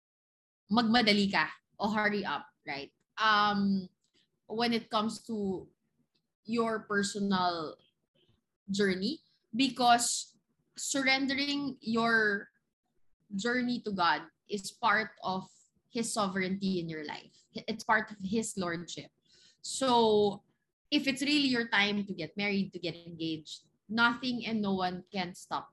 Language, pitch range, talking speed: English, 195-240 Hz, 120 wpm